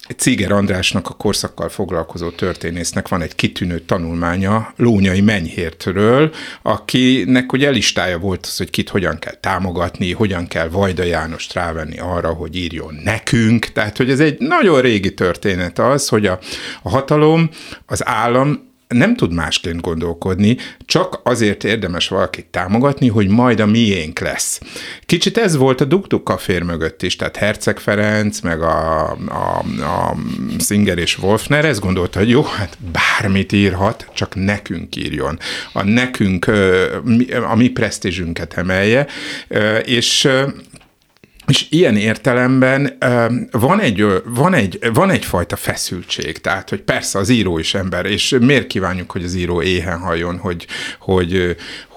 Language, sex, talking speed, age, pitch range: Hungarian, male, 140 wpm, 60-79, 90-120 Hz